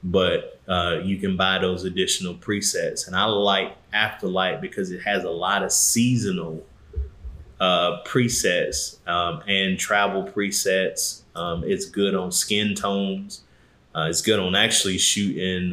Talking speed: 140 wpm